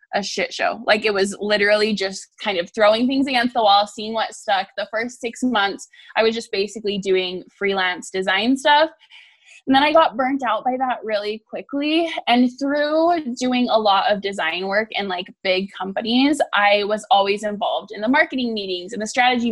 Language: English